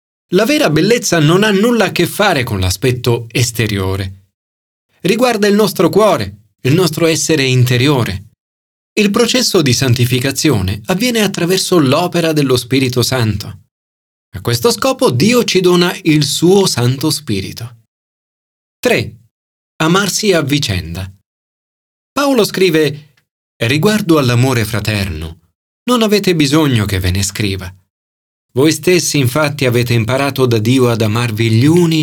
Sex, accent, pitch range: male, native, 110-170 Hz